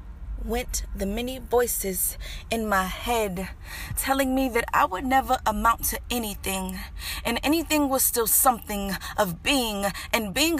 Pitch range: 195-265 Hz